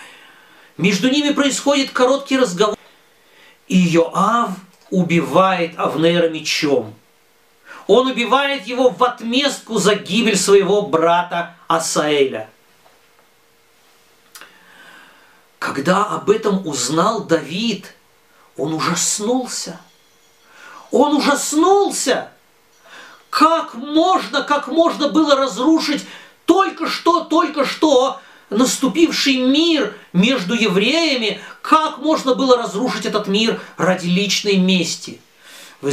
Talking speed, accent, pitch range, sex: 85 wpm, native, 190-270 Hz, male